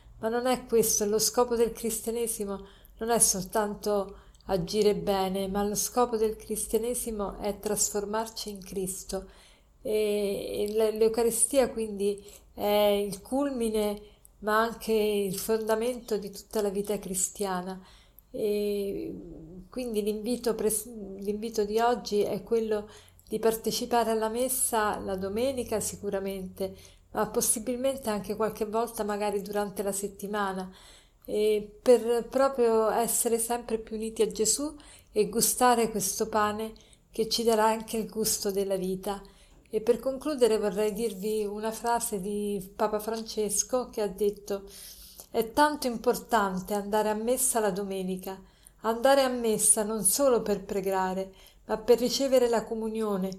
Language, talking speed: Italian, 130 wpm